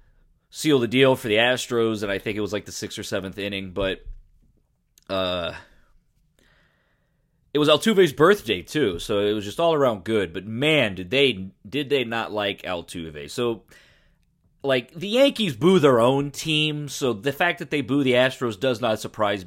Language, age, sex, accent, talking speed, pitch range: English, 30-49, male, American, 180 wpm, 105-140 Hz